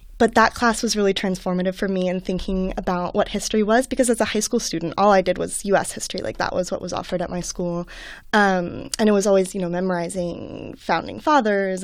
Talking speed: 230 wpm